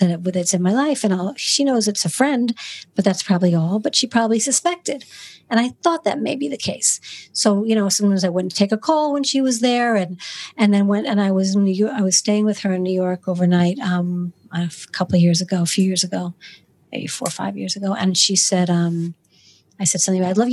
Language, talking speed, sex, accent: English, 250 wpm, female, American